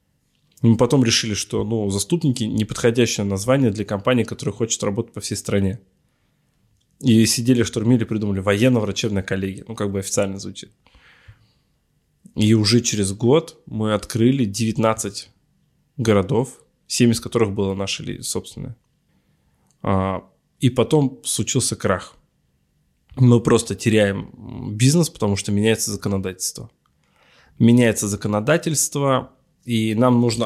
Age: 20-39